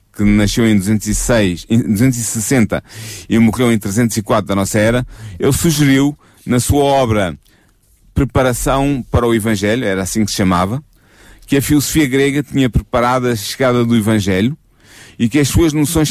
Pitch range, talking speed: 105-130 Hz, 155 wpm